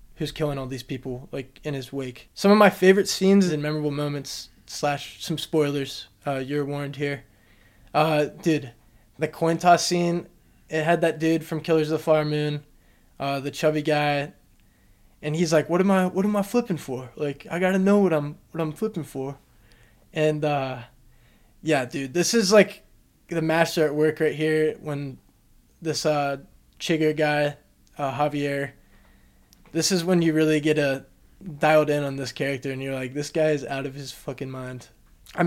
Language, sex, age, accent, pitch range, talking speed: English, male, 20-39, American, 135-165 Hz, 185 wpm